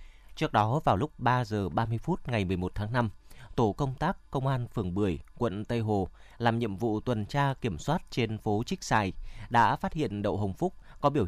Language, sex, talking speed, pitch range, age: Vietnamese, male, 220 wpm, 105-140 Hz, 20-39